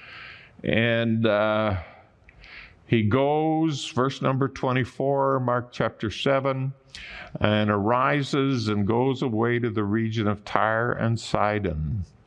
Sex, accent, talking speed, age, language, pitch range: male, American, 110 wpm, 50-69, English, 115-150 Hz